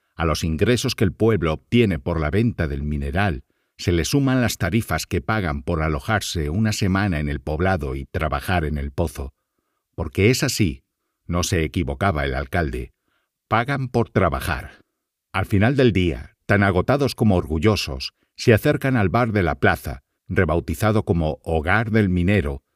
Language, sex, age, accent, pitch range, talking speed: Spanish, male, 60-79, Spanish, 80-110 Hz, 165 wpm